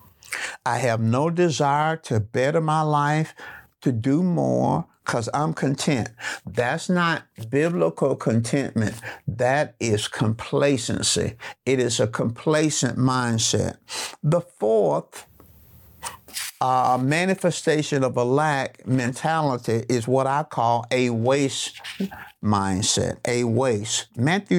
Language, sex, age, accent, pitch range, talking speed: English, male, 60-79, American, 115-155 Hz, 105 wpm